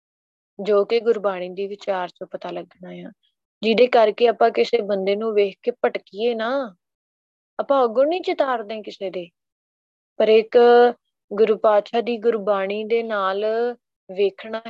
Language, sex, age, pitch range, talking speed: Punjabi, female, 20-39, 200-240 Hz, 135 wpm